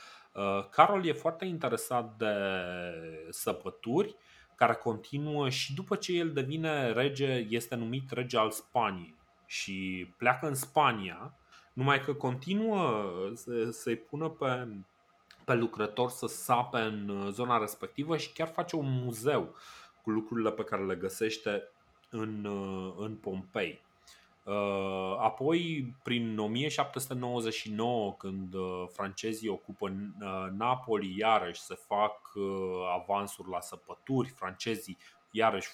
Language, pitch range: Romanian, 95-125 Hz